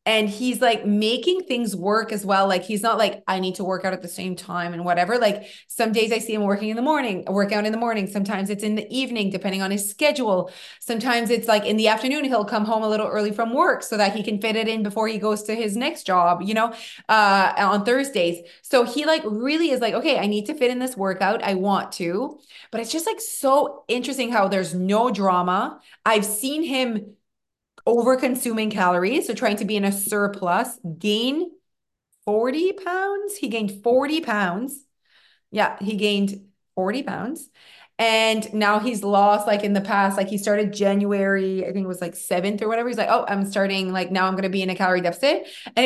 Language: English